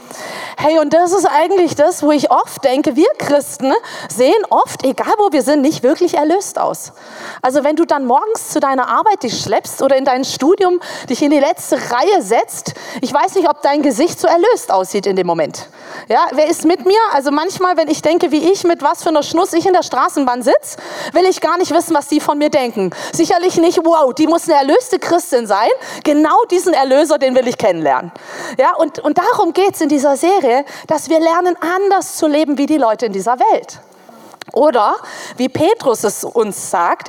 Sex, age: female, 30-49